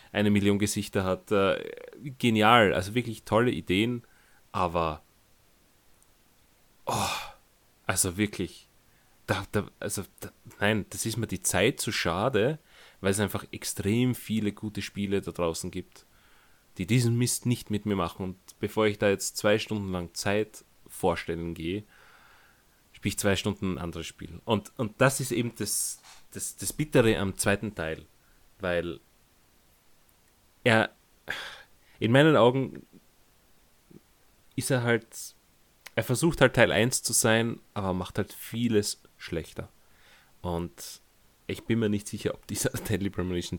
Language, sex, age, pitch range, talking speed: German, male, 30-49, 90-115 Hz, 135 wpm